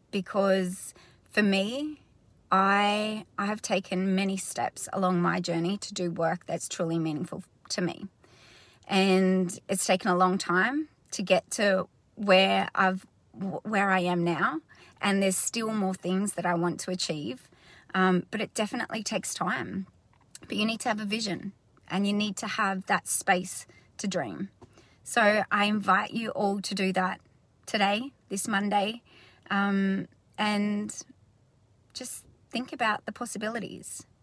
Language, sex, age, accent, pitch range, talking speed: English, female, 30-49, Australian, 185-220 Hz, 150 wpm